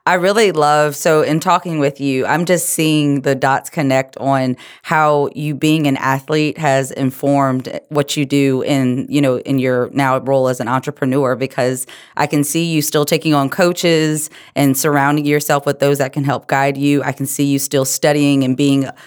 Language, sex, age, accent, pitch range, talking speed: English, female, 30-49, American, 135-155 Hz, 195 wpm